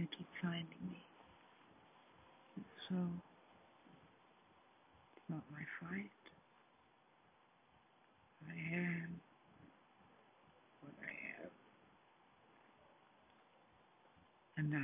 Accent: American